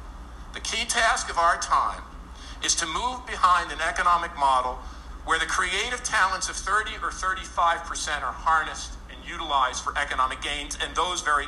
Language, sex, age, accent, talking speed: English, male, 50-69, American, 160 wpm